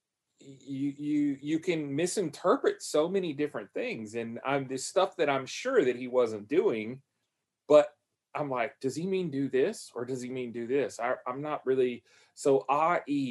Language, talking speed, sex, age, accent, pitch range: English, 185 wpm, male, 30-49, American, 135-180 Hz